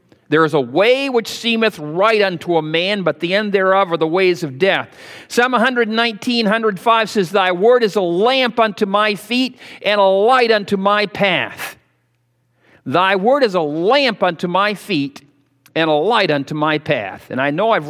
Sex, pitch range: male, 150-205 Hz